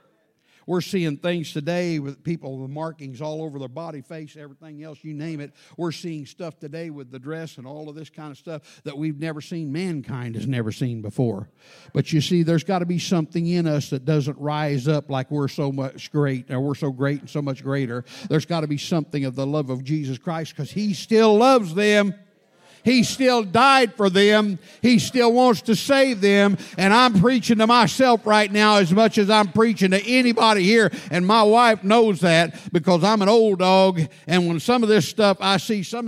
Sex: male